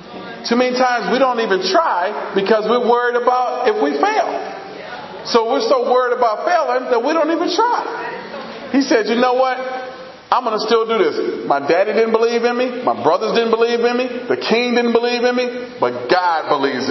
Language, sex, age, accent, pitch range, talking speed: English, male, 40-59, American, 180-245 Hz, 200 wpm